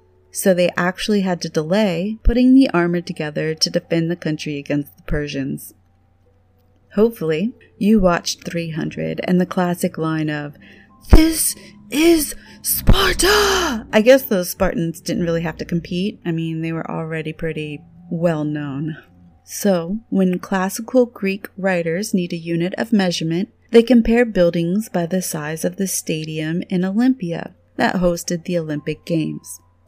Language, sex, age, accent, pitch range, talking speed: English, female, 30-49, American, 155-195 Hz, 145 wpm